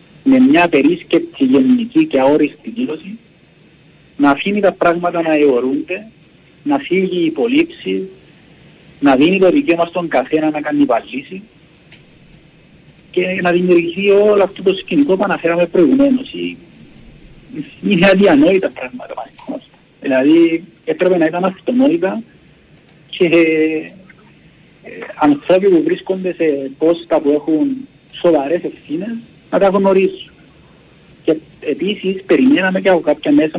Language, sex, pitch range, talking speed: Greek, male, 145-225 Hz, 120 wpm